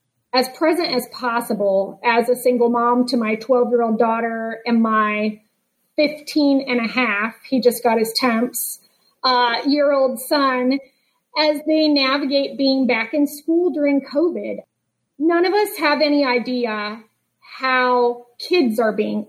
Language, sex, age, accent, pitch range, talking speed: English, female, 30-49, American, 240-285 Hz, 130 wpm